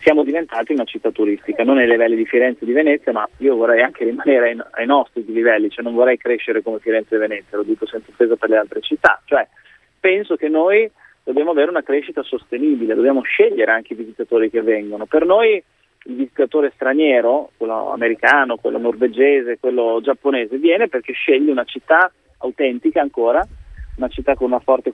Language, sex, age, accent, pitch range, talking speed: Italian, male, 30-49, native, 115-155 Hz, 185 wpm